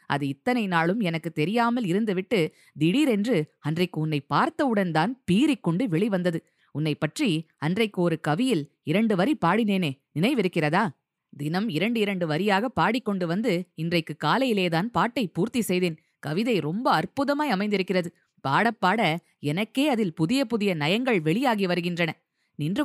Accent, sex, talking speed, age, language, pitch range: native, female, 120 wpm, 20-39, Tamil, 175-235 Hz